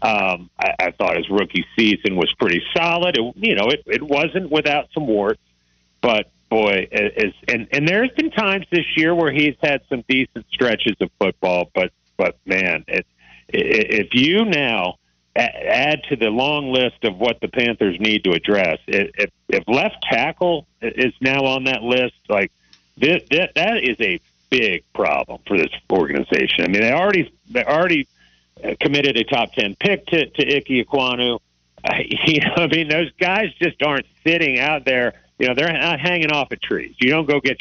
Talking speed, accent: 185 wpm, American